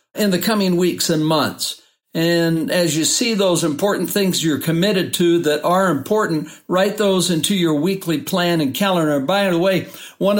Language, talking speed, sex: English, 180 wpm, male